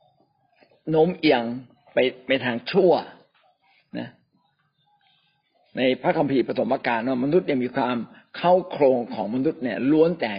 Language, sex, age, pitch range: Thai, male, 60-79, 125-175 Hz